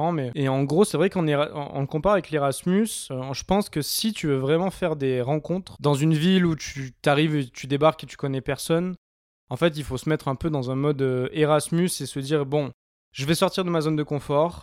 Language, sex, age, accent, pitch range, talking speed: French, male, 20-39, French, 135-170 Hz, 240 wpm